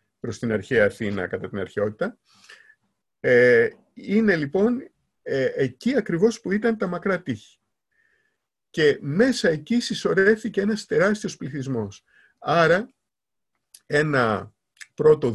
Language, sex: Greek, male